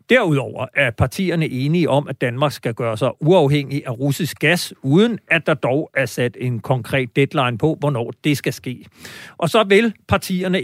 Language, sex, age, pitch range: Danish, male, 50-69, 130-170 Hz